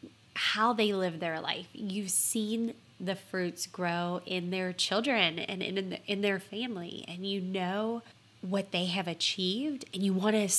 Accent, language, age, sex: American, English, 20-39, female